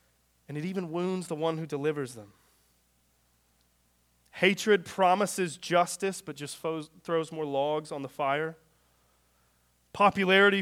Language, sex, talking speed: English, male, 120 wpm